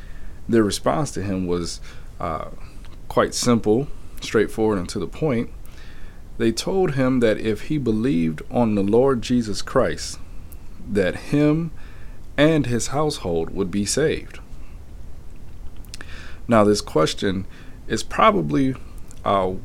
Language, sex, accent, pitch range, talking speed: English, male, American, 85-110 Hz, 120 wpm